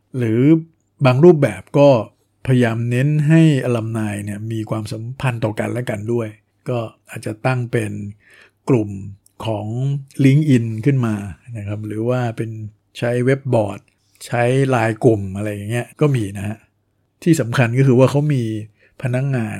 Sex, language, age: male, Thai, 60-79